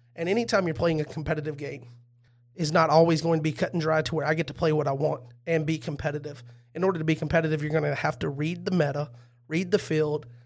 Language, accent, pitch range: English, American, 125-160 Hz